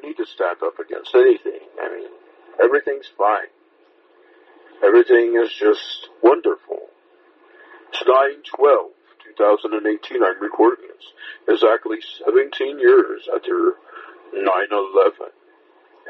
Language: English